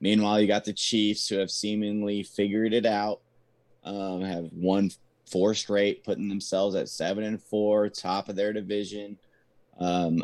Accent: American